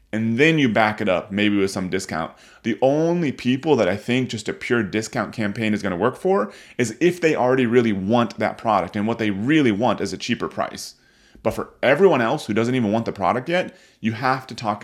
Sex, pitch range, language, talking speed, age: male, 100-130 Hz, English, 235 wpm, 30-49